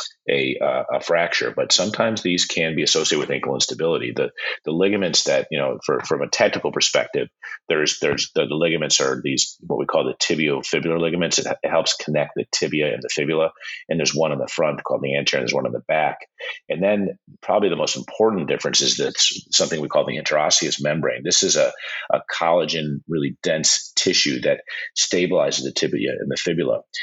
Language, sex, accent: English, male, American